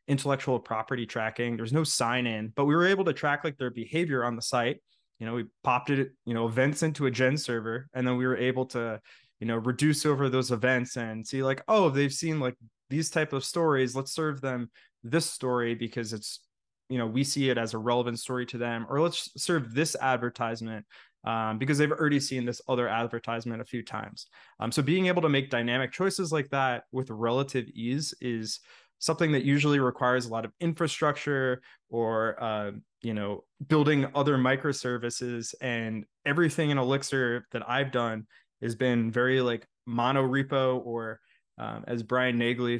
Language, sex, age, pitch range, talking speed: English, male, 20-39, 115-145 Hz, 190 wpm